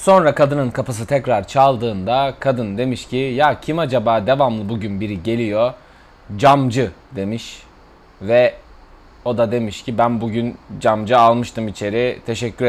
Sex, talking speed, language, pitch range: male, 130 wpm, Turkish, 120-165 Hz